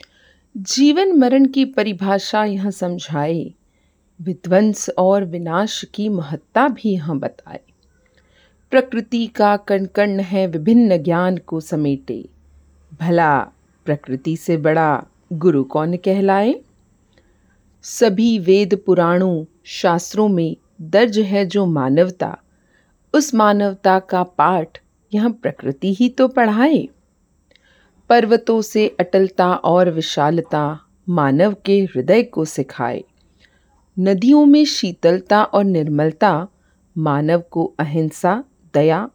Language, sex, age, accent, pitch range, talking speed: Hindi, female, 40-59, native, 160-215 Hz, 105 wpm